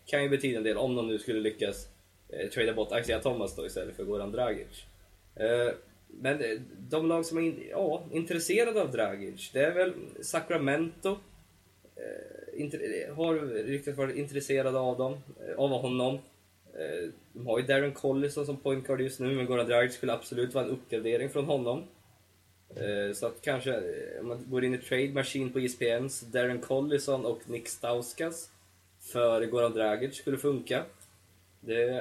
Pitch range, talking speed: 110-140 Hz, 170 wpm